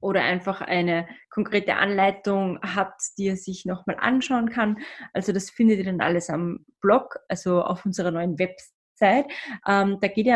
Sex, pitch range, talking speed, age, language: female, 190-230 Hz, 170 wpm, 20-39, German